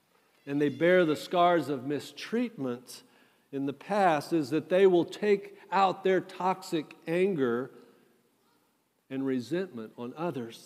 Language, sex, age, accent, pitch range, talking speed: English, male, 50-69, American, 150-210 Hz, 130 wpm